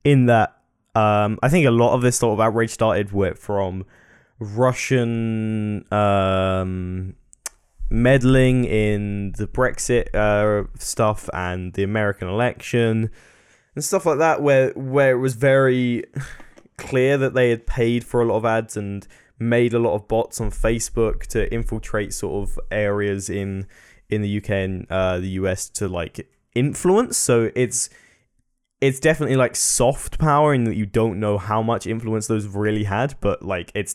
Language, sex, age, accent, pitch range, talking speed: English, male, 10-29, British, 100-125 Hz, 160 wpm